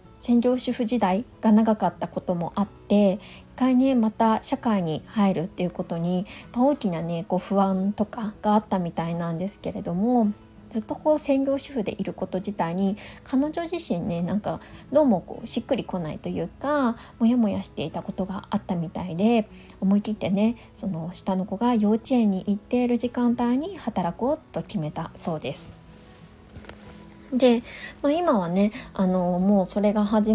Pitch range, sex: 185-245 Hz, female